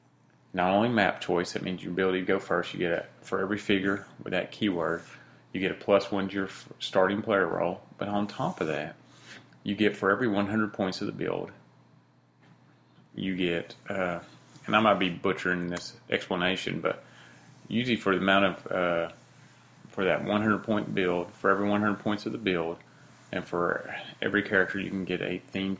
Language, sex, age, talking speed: English, male, 30-49, 195 wpm